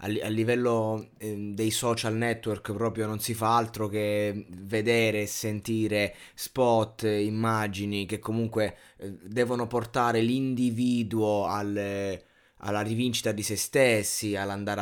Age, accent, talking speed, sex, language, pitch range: 20-39, native, 115 wpm, male, Italian, 105-120 Hz